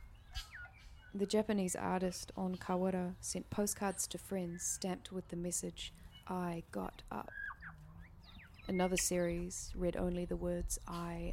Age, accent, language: 20-39, Australian, English